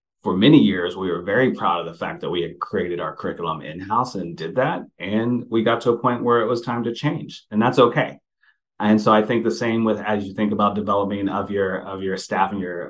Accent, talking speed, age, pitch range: American, 250 wpm, 30-49, 95-110 Hz